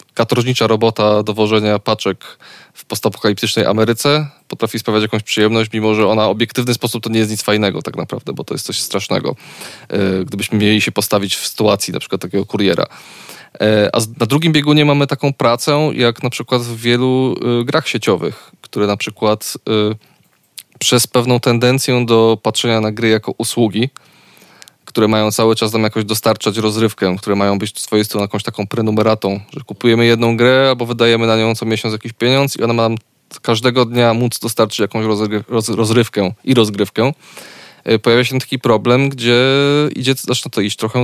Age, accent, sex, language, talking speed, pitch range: 20-39, native, male, Polish, 165 wpm, 105-125 Hz